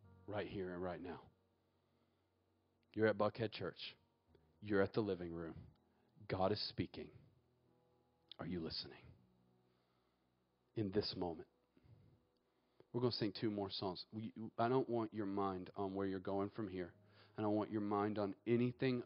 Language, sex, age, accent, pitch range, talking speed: English, male, 40-59, American, 90-105 Hz, 150 wpm